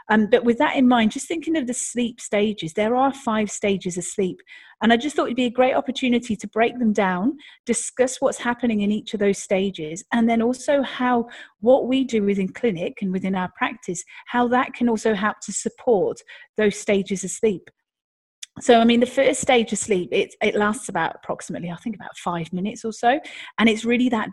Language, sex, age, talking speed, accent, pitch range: English, female, 30-49, 215 wpm, British, 195-240 Hz